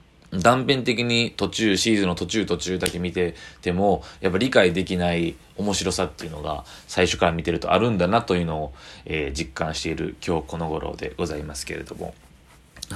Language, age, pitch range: Japanese, 20-39, 85-100 Hz